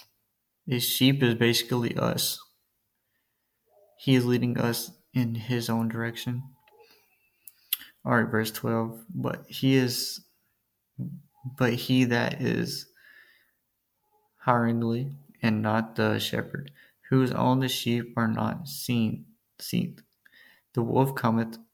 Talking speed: 110 wpm